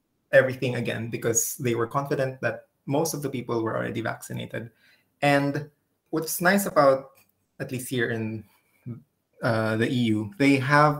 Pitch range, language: 115-140 Hz, English